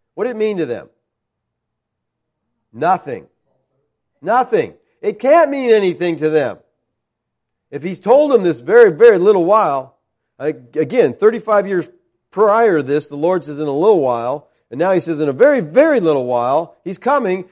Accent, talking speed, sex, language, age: American, 165 wpm, male, English, 40-59